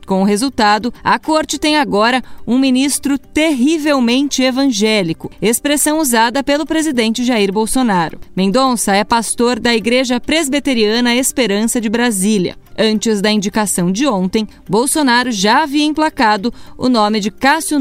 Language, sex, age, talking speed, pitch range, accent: Portuguese, female, 20-39, 130 wpm, 205-275 Hz, Brazilian